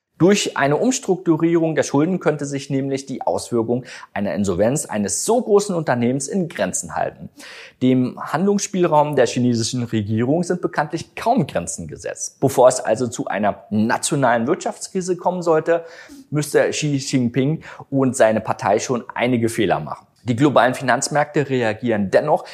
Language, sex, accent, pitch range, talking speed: German, male, German, 125-165 Hz, 140 wpm